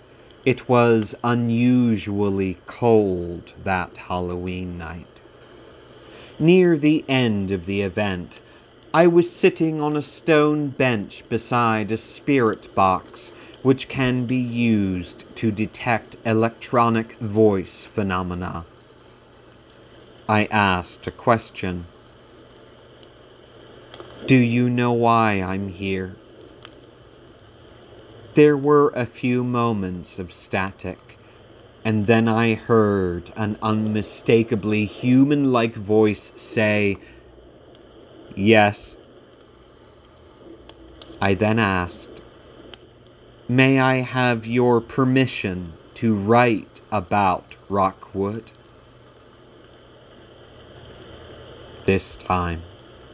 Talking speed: 85 wpm